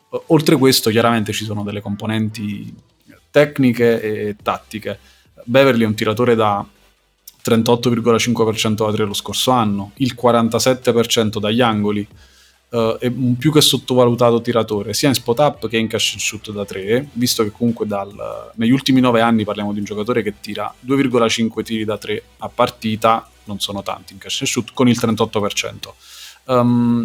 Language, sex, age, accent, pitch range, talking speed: Italian, male, 30-49, native, 105-120 Hz, 165 wpm